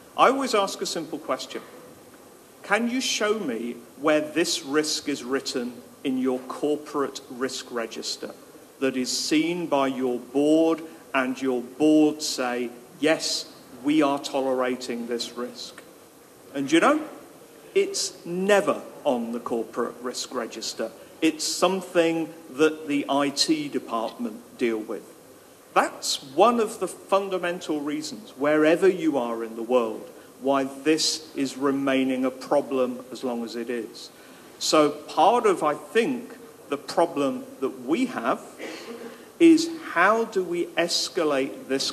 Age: 50-69